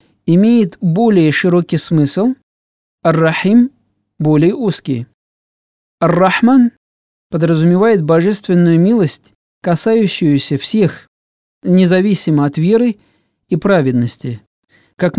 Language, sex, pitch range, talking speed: Russian, male, 145-195 Hz, 75 wpm